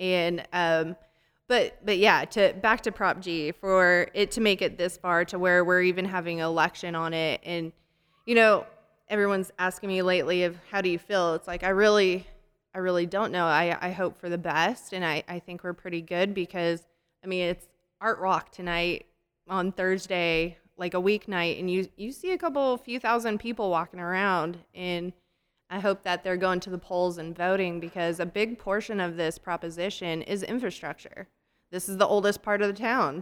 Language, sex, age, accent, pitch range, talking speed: English, female, 20-39, American, 175-205 Hz, 195 wpm